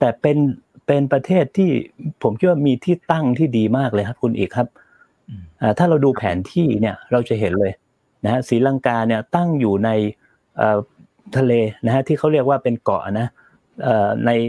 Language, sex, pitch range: Thai, male, 105-135 Hz